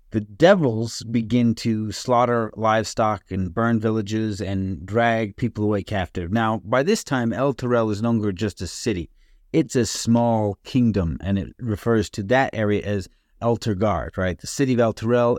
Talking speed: 165 wpm